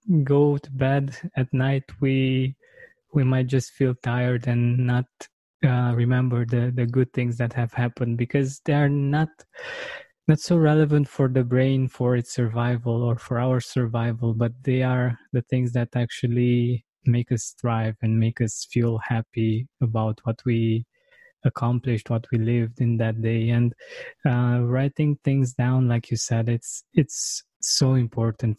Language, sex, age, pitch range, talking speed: English, male, 20-39, 120-135 Hz, 160 wpm